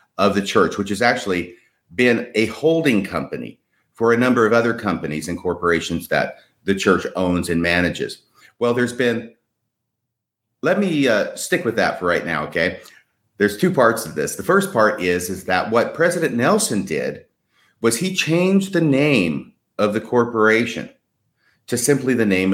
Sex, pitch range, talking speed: male, 100-125 Hz, 170 wpm